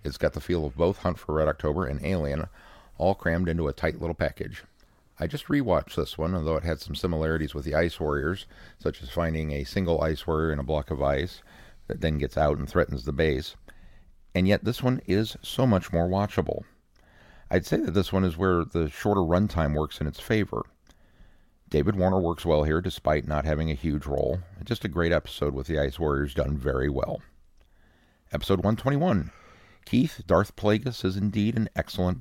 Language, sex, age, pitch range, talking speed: English, male, 50-69, 75-95 Hz, 200 wpm